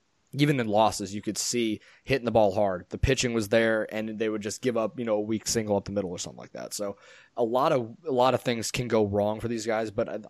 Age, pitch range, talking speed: 20-39, 105-125 Hz, 280 wpm